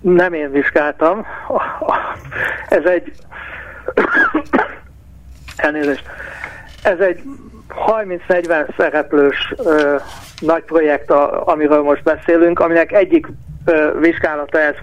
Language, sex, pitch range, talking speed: Hungarian, male, 145-180 Hz, 75 wpm